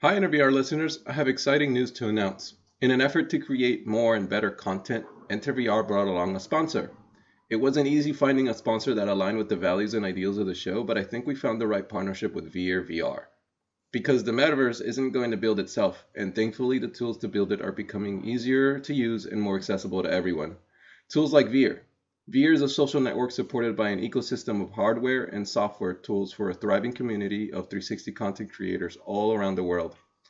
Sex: male